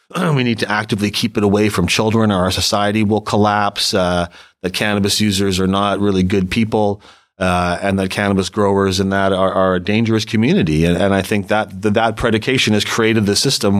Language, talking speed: English, 205 wpm